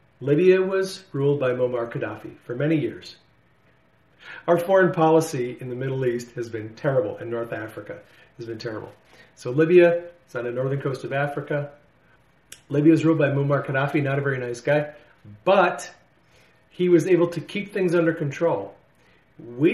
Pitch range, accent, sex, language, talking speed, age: 125-165 Hz, American, male, English, 165 wpm, 40-59